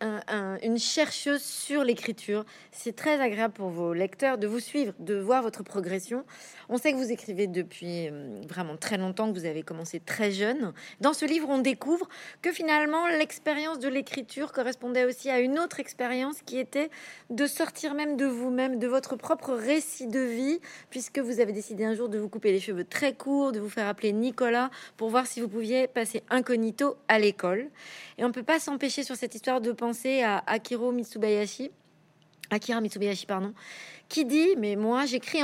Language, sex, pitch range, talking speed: French, female, 215-275 Hz, 185 wpm